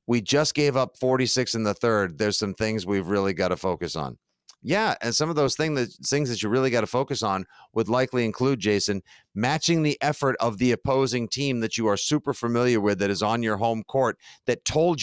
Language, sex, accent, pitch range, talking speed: English, male, American, 110-150 Hz, 220 wpm